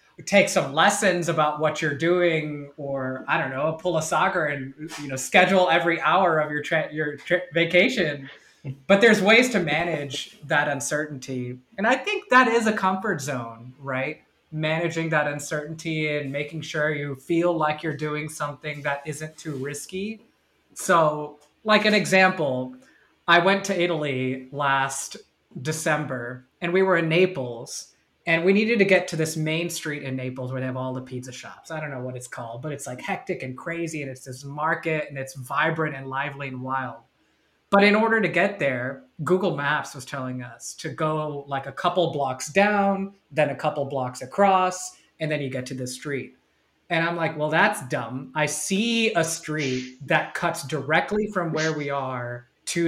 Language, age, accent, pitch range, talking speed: English, 20-39, American, 135-175 Hz, 185 wpm